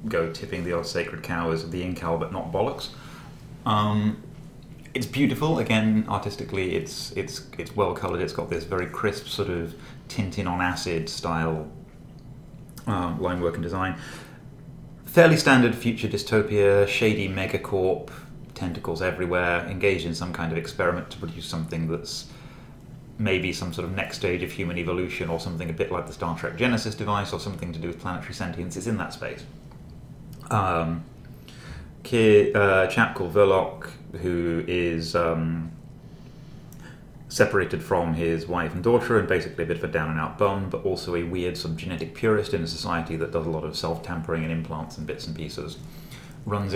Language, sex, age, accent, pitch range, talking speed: English, male, 30-49, British, 85-115 Hz, 170 wpm